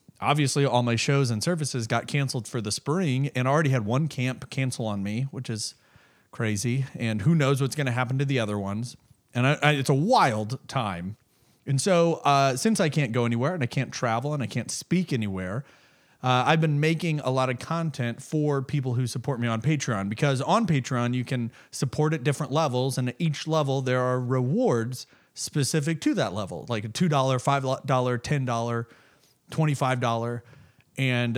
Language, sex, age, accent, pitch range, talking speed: English, male, 30-49, American, 120-165 Hz, 185 wpm